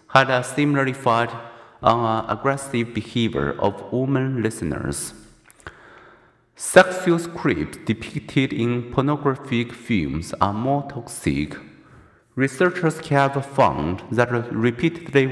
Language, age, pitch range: Chinese, 50-69, 110-140 Hz